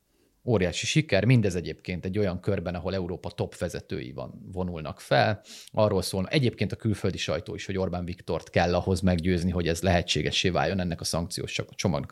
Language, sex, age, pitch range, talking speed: Hungarian, male, 30-49, 90-115 Hz, 175 wpm